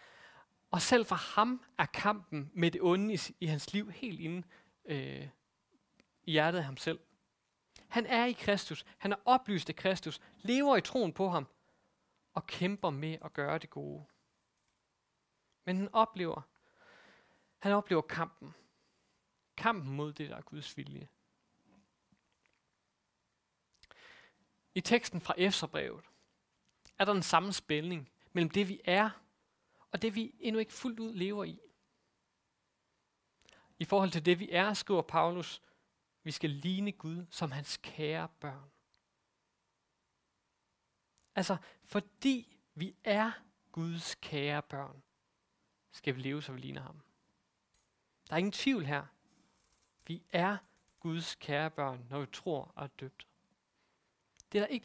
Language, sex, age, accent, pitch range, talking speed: Danish, male, 30-49, native, 155-205 Hz, 135 wpm